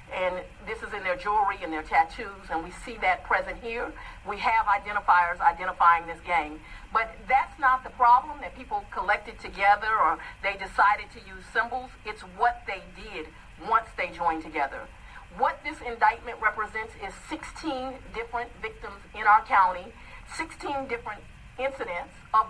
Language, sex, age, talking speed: English, female, 50-69, 155 wpm